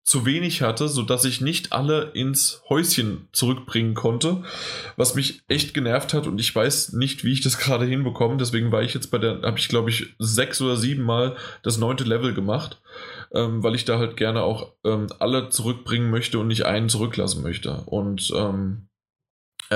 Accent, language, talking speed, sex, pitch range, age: German, German, 185 wpm, male, 115-140 Hz, 20-39